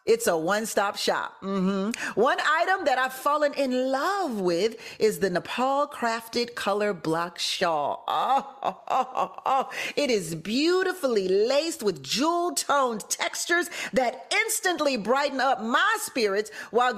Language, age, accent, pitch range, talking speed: English, 40-59, American, 210-315 Hz, 130 wpm